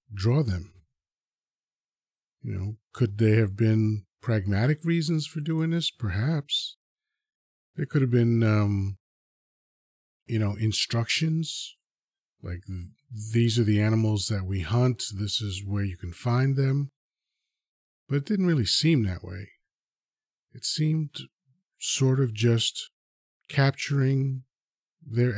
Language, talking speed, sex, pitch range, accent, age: English, 120 wpm, male, 100-135 Hz, American, 40-59